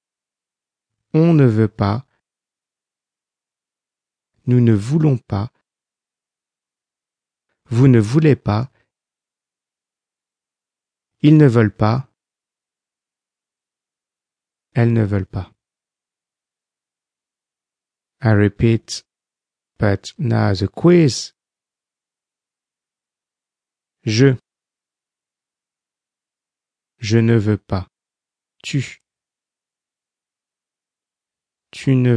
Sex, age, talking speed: male, 50-69, 65 wpm